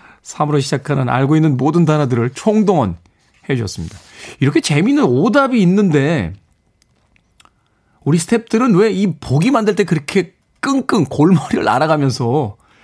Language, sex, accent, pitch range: Korean, male, native, 115-170 Hz